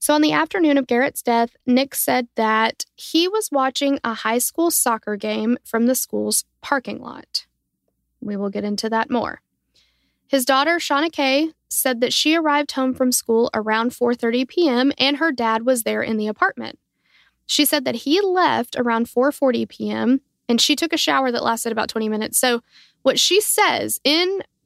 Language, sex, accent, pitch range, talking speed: English, female, American, 235-300 Hz, 180 wpm